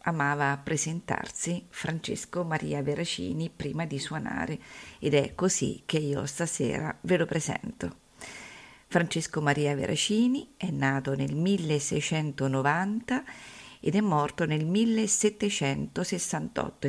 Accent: native